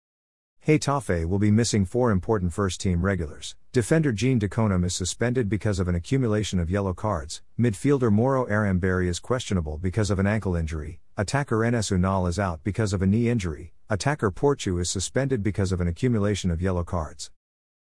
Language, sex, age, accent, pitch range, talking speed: English, male, 50-69, American, 90-115 Hz, 175 wpm